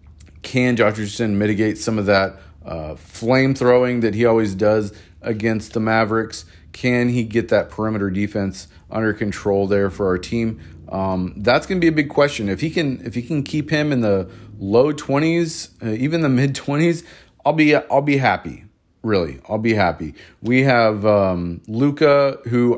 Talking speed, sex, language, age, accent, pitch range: 185 wpm, male, English, 30-49, American, 100-130 Hz